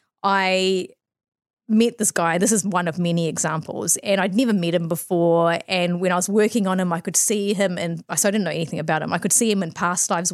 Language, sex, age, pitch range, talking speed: English, female, 30-49, 180-220 Hz, 245 wpm